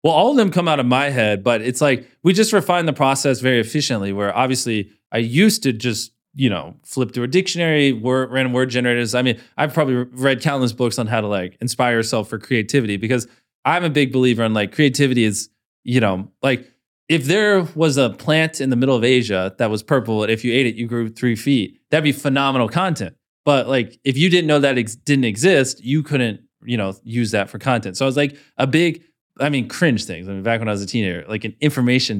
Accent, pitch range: American, 115-135 Hz